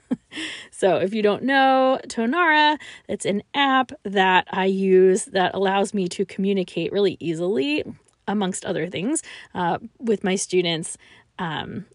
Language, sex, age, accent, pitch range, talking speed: English, female, 20-39, American, 185-245 Hz, 135 wpm